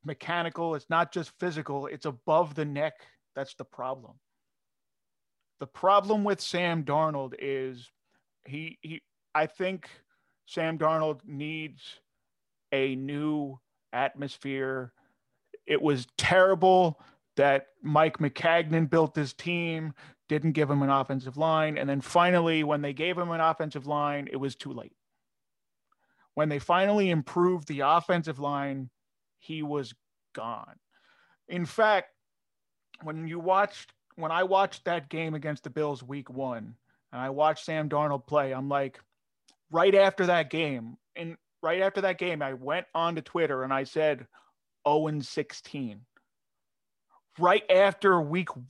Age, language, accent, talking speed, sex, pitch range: 30-49, English, American, 135 wpm, male, 140-175 Hz